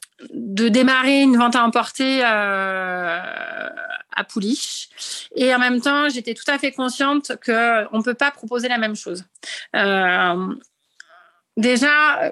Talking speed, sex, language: 135 wpm, female, French